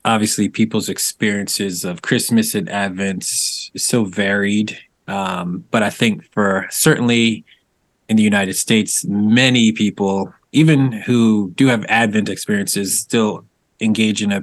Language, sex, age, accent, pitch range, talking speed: English, male, 30-49, American, 100-115 Hz, 135 wpm